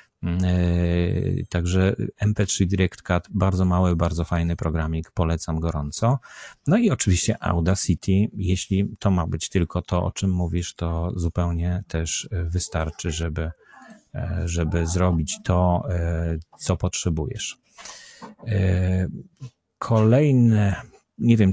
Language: Polish